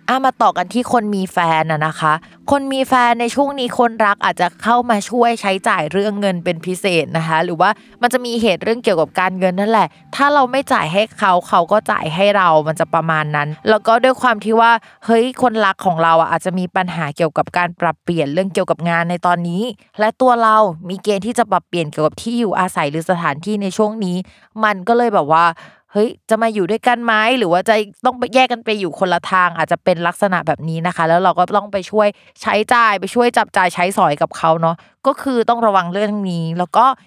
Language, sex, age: Thai, female, 20-39